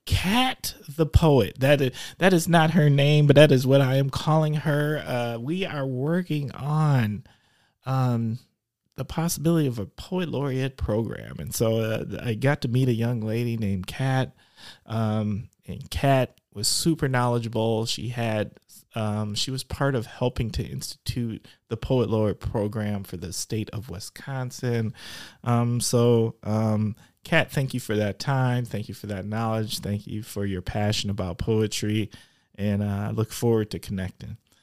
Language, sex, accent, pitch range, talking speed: English, male, American, 110-135 Hz, 165 wpm